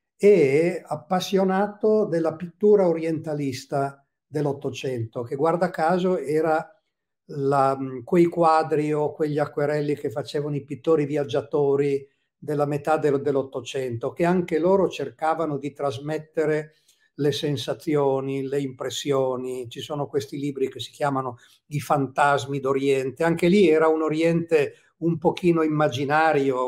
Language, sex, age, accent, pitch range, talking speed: Italian, male, 50-69, native, 135-160 Hz, 115 wpm